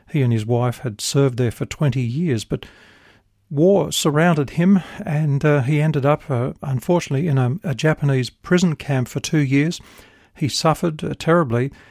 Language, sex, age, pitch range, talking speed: English, male, 50-69, 125-165 Hz, 165 wpm